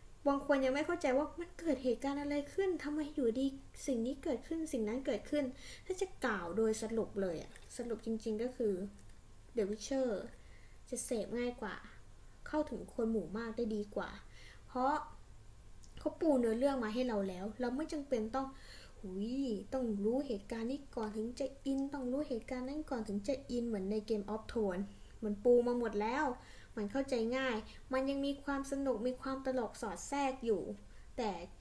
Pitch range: 220-270 Hz